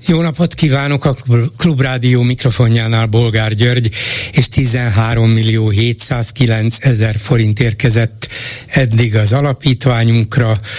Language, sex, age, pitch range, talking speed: Hungarian, male, 60-79, 110-135 Hz, 85 wpm